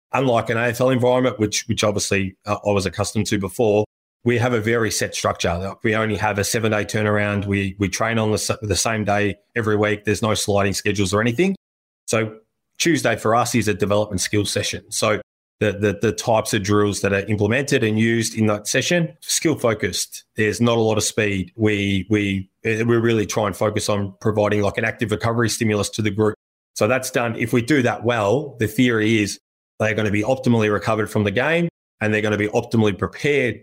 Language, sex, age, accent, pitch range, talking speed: English, male, 20-39, Australian, 105-115 Hz, 205 wpm